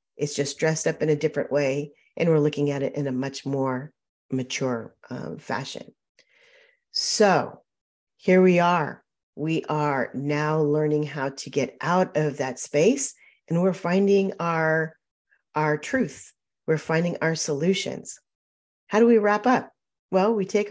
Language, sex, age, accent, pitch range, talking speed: English, female, 40-59, American, 150-215 Hz, 155 wpm